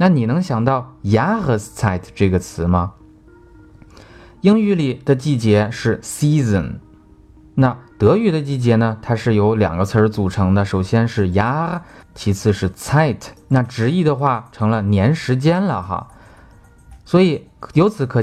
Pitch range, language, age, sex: 105-160 Hz, Chinese, 20-39, male